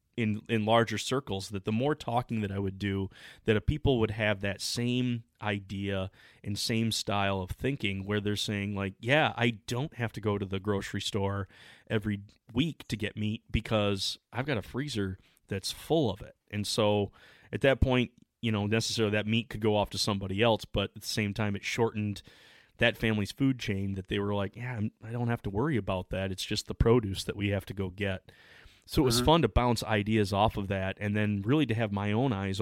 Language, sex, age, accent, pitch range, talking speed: English, male, 30-49, American, 100-115 Hz, 220 wpm